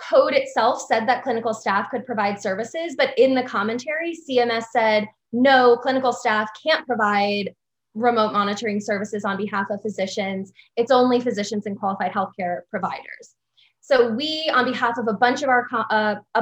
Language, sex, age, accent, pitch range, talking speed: English, female, 20-39, American, 210-250 Hz, 145 wpm